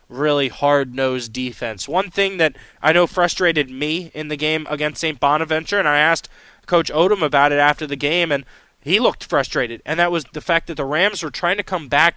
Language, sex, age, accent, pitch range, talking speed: English, male, 20-39, American, 145-170 Hz, 210 wpm